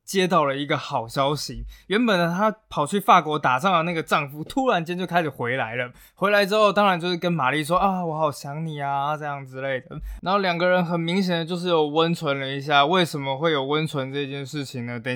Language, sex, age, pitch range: Chinese, male, 20-39, 135-180 Hz